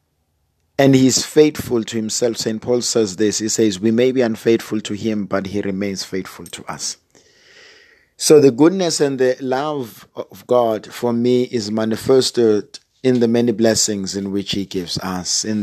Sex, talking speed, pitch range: male, 175 wpm, 105-125 Hz